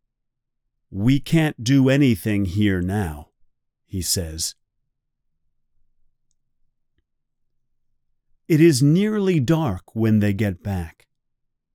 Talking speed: 80 wpm